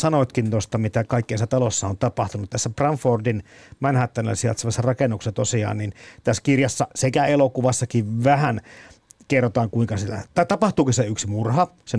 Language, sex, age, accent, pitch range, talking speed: Finnish, male, 50-69, native, 110-140 Hz, 135 wpm